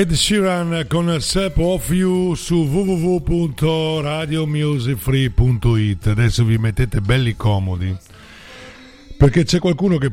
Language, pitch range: Italian, 100-135 Hz